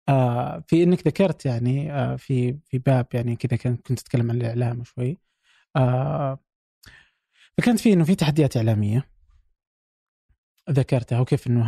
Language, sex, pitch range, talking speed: Arabic, male, 125-150 Hz, 140 wpm